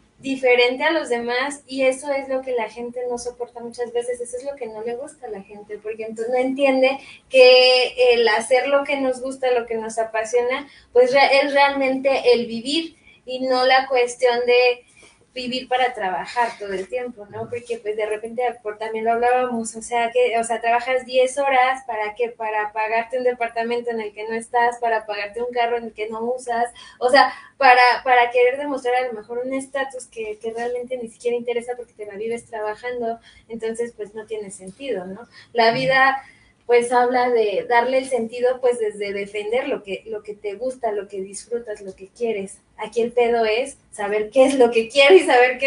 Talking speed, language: 205 wpm, Spanish